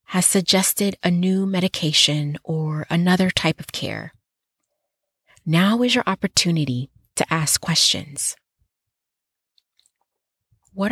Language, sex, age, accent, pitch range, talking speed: English, female, 30-49, American, 165-210 Hz, 100 wpm